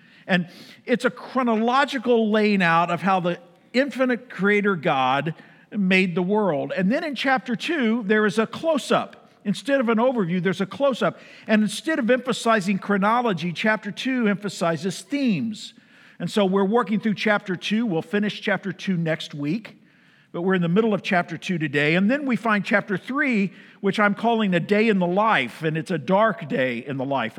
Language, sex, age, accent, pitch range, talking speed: English, male, 50-69, American, 170-225 Hz, 185 wpm